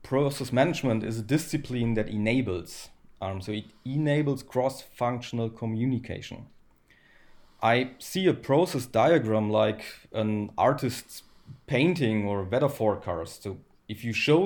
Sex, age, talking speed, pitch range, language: male, 30-49, 125 wpm, 105-135 Hz, English